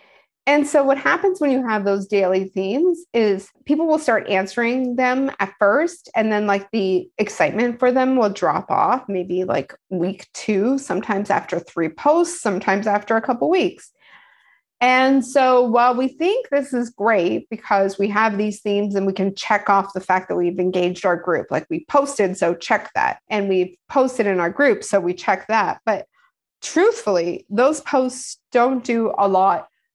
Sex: female